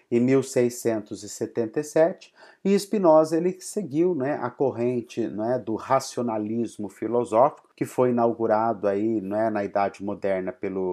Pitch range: 115-160 Hz